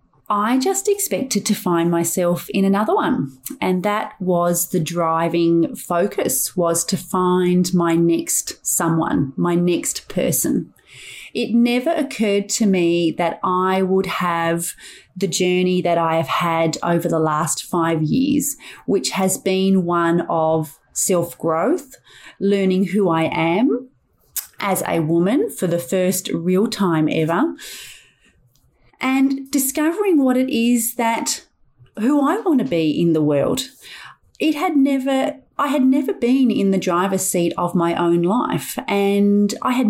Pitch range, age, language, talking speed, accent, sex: 175-245 Hz, 30-49, English, 145 wpm, Australian, female